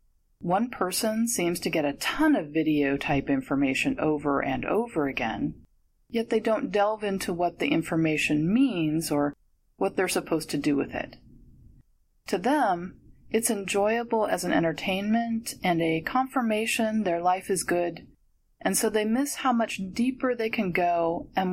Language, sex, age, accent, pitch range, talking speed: English, female, 30-49, American, 160-210 Hz, 155 wpm